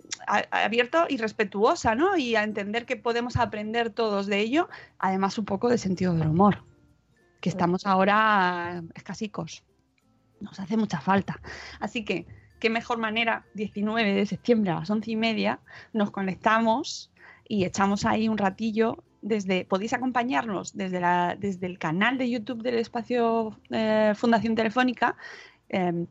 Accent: Spanish